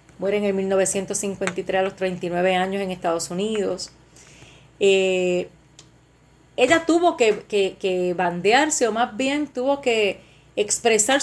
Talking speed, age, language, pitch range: 130 wpm, 30-49, Spanish, 190-250 Hz